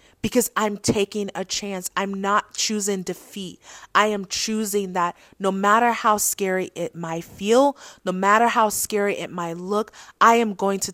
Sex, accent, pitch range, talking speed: female, American, 185-215 Hz, 170 wpm